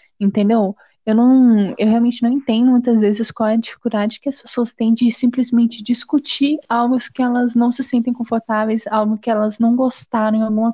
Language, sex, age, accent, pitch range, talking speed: Portuguese, female, 20-39, Brazilian, 200-235 Hz, 190 wpm